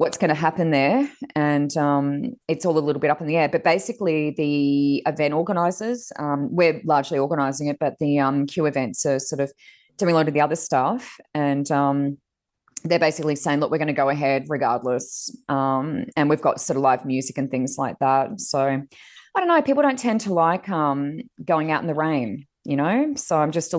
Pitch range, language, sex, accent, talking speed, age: 140-170 Hz, English, female, Australian, 215 wpm, 20-39